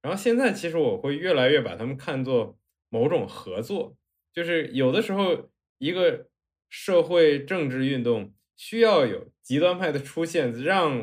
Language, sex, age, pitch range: Chinese, male, 20-39, 110-140 Hz